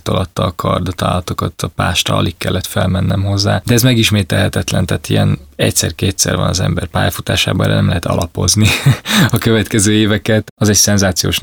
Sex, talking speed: male, 160 wpm